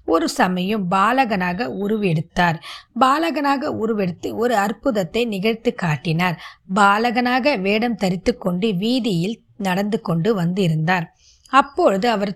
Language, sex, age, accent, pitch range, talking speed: Tamil, female, 20-39, native, 190-240 Hz, 95 wpm